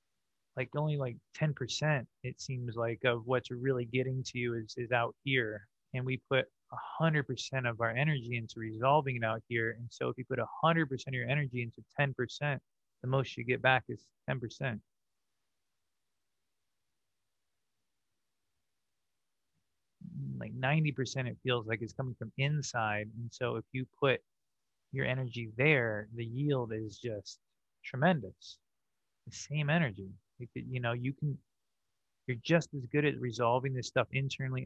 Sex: male